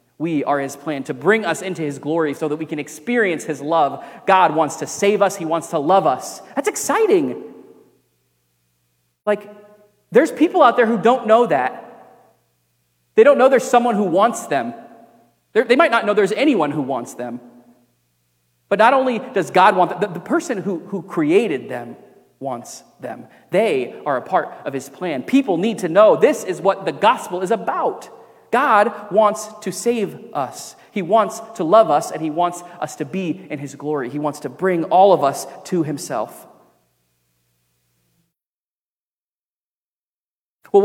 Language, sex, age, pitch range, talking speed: English, male, 30-49, 140-215 Hz, 170 wpm